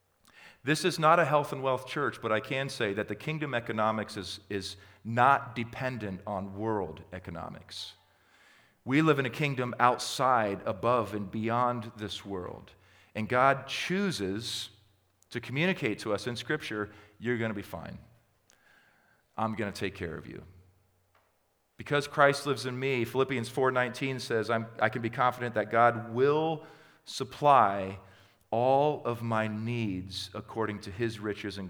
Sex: male